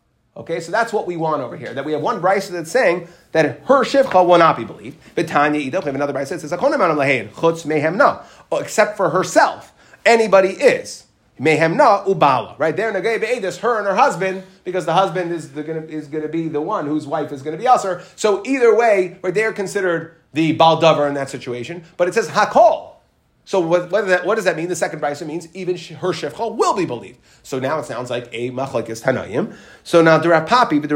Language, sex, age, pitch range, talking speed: English, male, 30-49, 150-200 Hz, 215 wpm